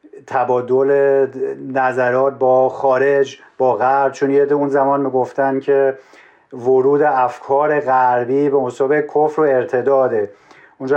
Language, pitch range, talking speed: Persian, 125-145 Hz, 115 wpm